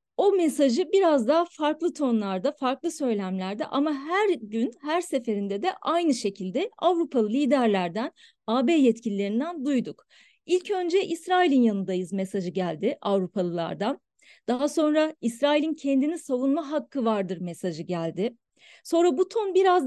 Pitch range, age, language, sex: 225-325 Hz, 40-59, Turkish, female